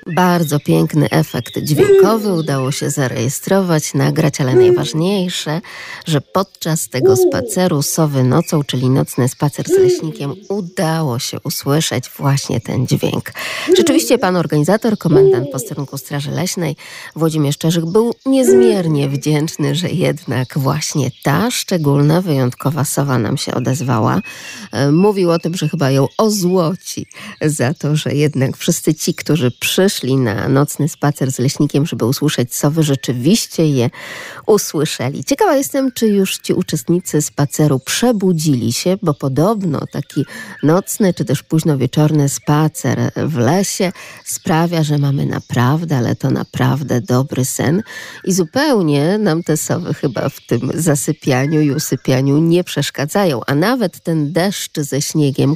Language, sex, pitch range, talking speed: Polish, female, 140-180 Hz, 135 wpm